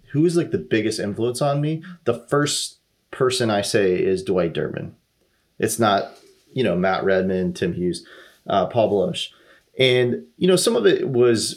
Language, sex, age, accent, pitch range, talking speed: English, male, 30-49, American, 105-145 Hz, 175 wpm